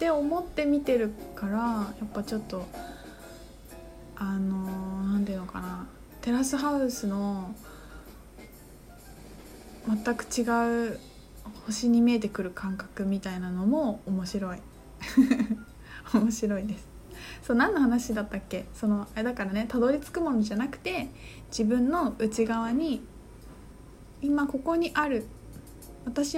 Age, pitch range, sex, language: 20-39, 210-280 Hz, female, Japanese